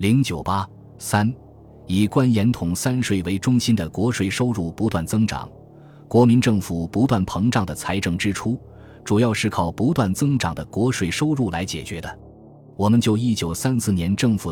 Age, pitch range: 20-39, 95-120 Hz